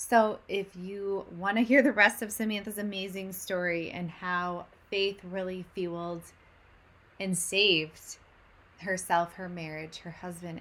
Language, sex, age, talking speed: English, female, 20-39, 135 wpm